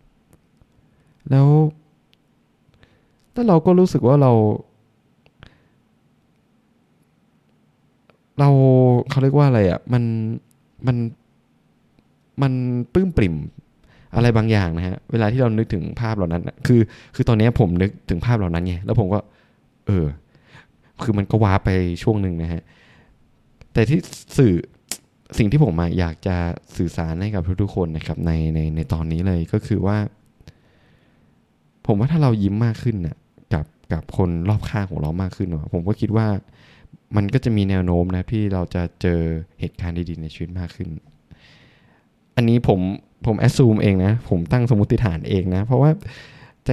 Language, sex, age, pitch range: Thai, male, 20-39, 85-120 Hz